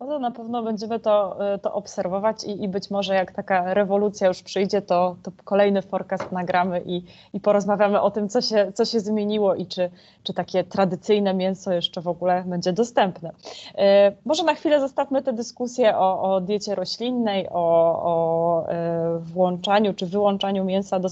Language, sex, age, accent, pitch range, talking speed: Polish, female, 20-39, native, 185-210 Hz, 160 wpm